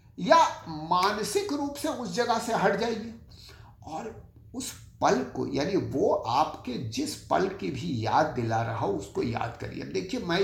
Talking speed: 165 wpm